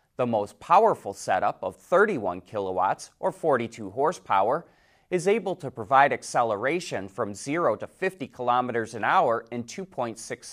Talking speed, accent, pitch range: 135 wpm, American, 110-150 Hz